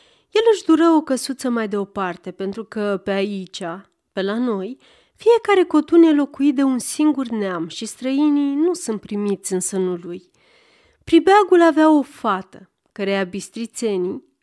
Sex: female